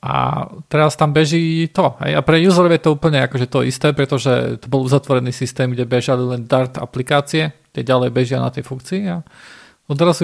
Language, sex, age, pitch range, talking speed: Slovak, male, 40-59, 130-160 Hz, 200 wpm